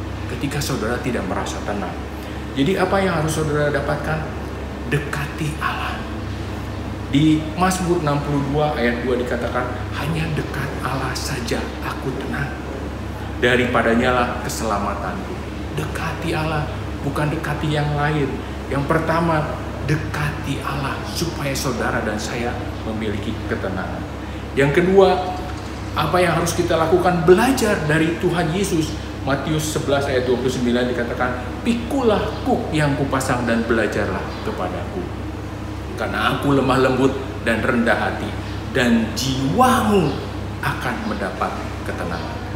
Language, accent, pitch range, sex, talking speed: Indonesian, native, 105-145 Hz, male, 110 wpm